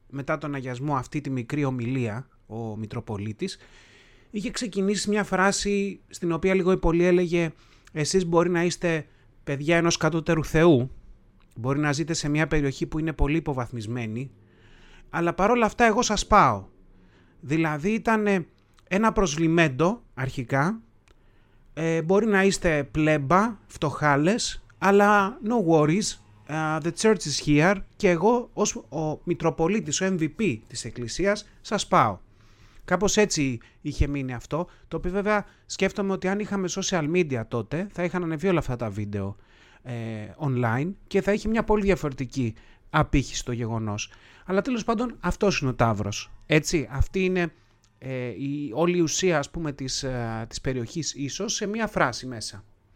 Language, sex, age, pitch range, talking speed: Greek, male, 30-49, 125-185 Hz, 150 wpm